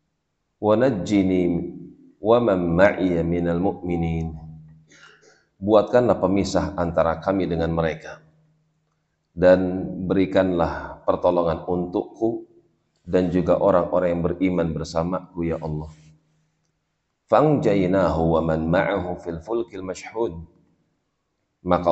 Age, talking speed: 40-59, 80 wpm